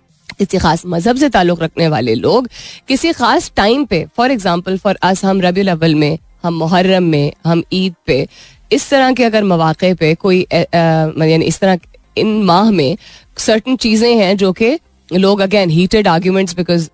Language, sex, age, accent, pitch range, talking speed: Hindi, female, 20-39, native, 170-235 Hz, 175 wpm